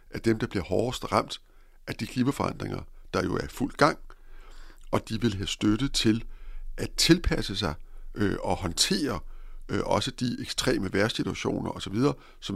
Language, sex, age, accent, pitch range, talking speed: Danish, male, 60-79, native, 110-145 Hz, 160 wpm